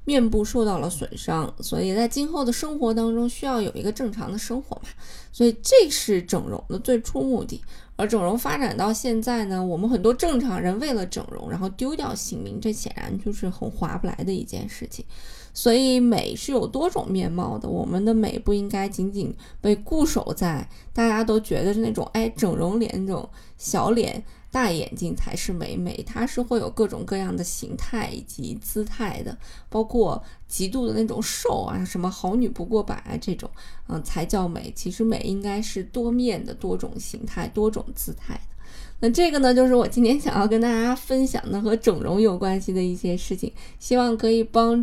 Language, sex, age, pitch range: Chinese, female, 20-39, 195-240 Hz